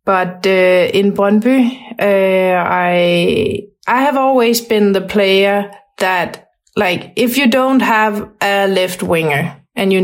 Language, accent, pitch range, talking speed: English, Danish, 185-225 Hz, 135 wpm